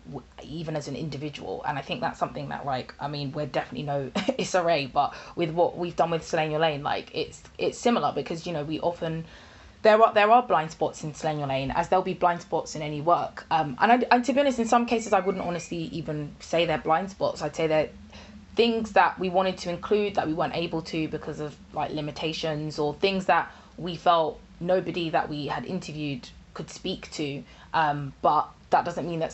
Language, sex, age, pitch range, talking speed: English, female, 20-39, 145-175 Hz, 215 wpm